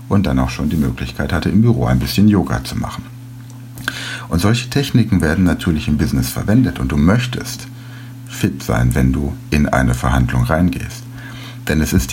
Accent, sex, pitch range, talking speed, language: German, male, 80-125 Hz, 180 wpm, German